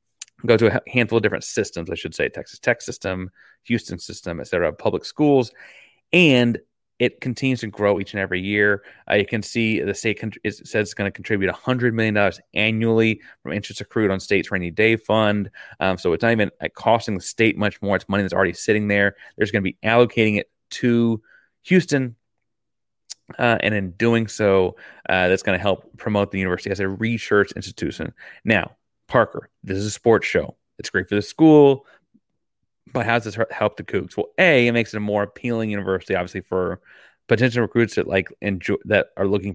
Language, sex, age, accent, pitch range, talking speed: English, male, 30-49, American, 95-115 Hz, 200 wpm